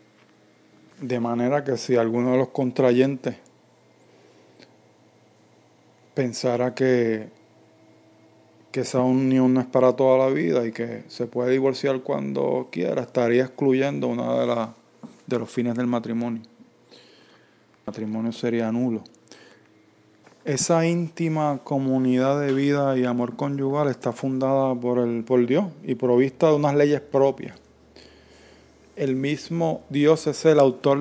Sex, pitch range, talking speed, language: male, 110-135 Hz, 125 wpm, English